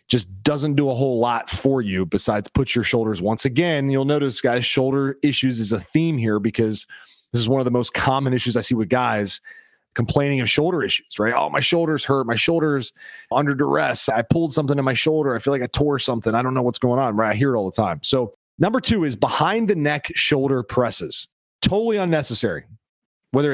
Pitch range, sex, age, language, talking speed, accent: 125-160 Hz, male, 30-49, English, 220 wpm, American